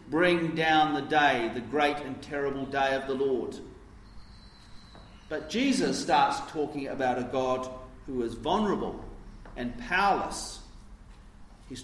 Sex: male